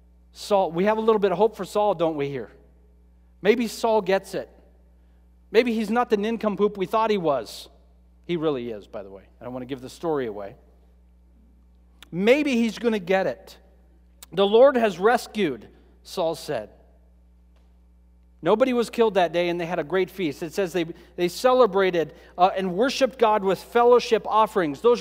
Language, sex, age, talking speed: English, male, 40-59, 180 wpm